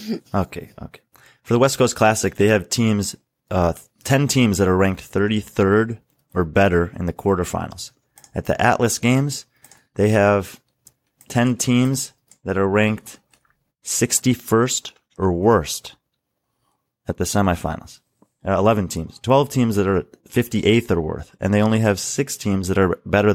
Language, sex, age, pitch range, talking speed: English, male, 30-49, 85-110 Hz, 150 wpm